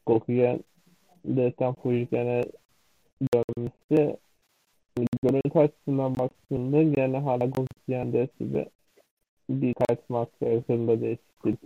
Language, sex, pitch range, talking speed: Turkish, male, 115-140 Hz, 70 wpm